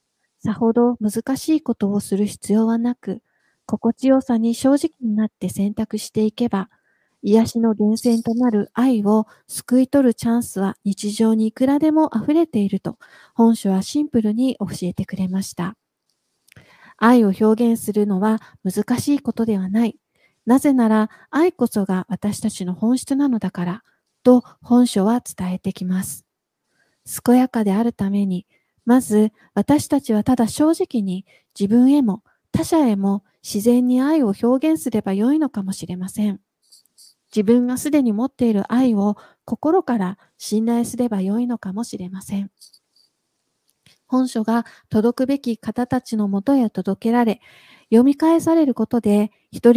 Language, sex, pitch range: Japanese, female, 205-250 Hz